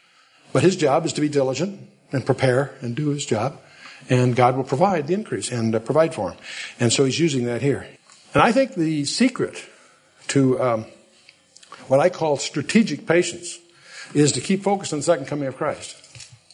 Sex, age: male, 60-79